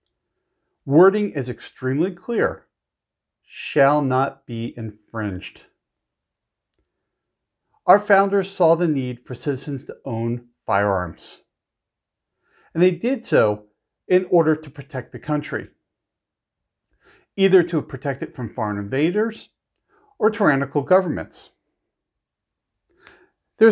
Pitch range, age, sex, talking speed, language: 115-175 Hz, 50-69, male, 100 wpm, English